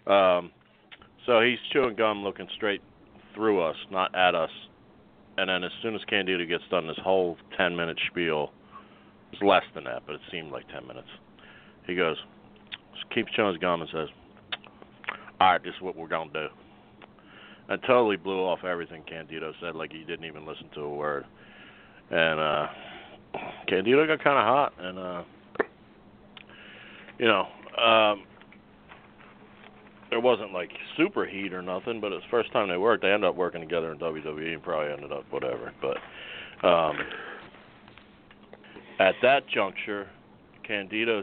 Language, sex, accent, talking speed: English, male, American, 160 wpm